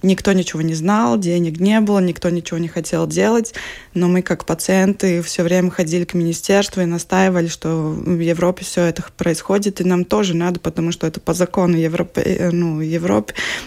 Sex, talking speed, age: female, 180 wpm, 20-39